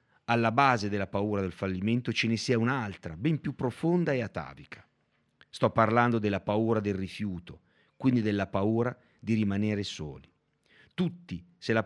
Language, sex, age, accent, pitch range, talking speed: Italian, male, 40-59, native, 100-130 Hz, 150 wpm